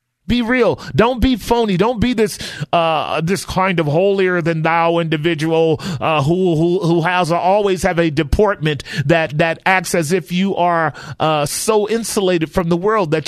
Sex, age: male, 40-59